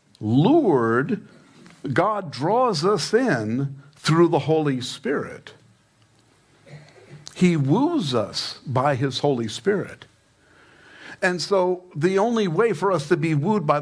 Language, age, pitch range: English, 50-69, 130-165 Hz